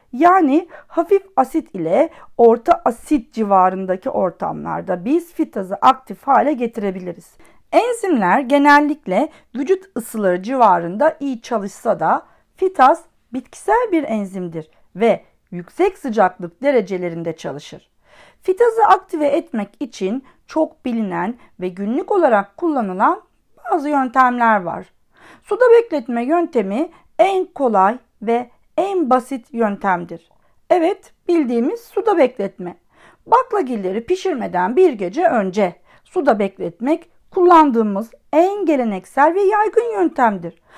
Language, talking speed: Turkish, 100 wpm